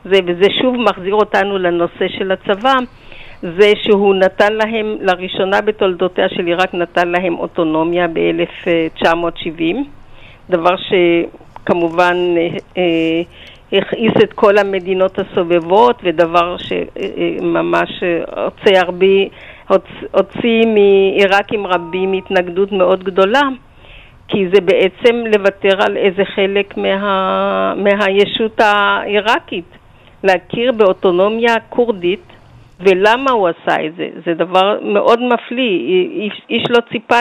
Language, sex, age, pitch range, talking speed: Hebrew, female, 50-69, 180-220 Hz, 105 wpm